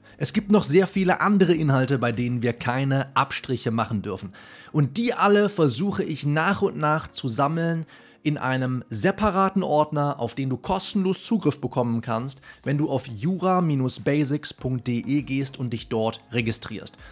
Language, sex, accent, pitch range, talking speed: German, male, German, 125-170 Hz, 155 wpm